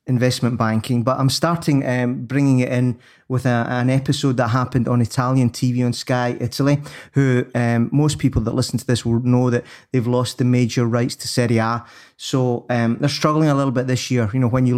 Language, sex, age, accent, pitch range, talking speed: English, male, 30-49, British, 115-130 Hz, 215 wpm